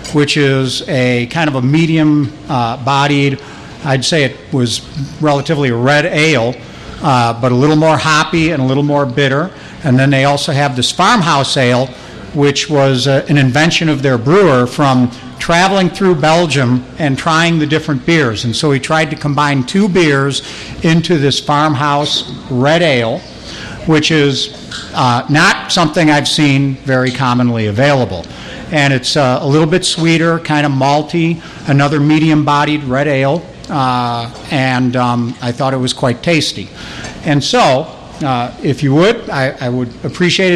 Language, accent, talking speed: English, American, 155 wpm